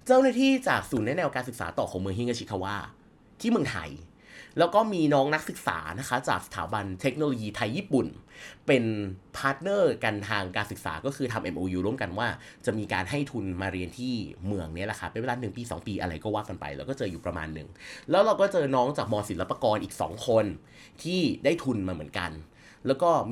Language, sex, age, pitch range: Thai, male, 30-49, 95-145 Hz